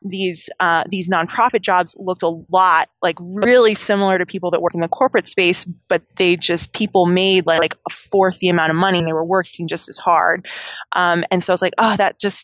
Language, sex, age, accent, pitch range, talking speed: English, female, 20-39, American, 165-190 Hz, 230 wpm